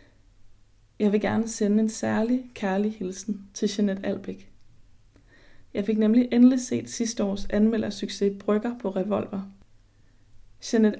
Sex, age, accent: female, 20-39, native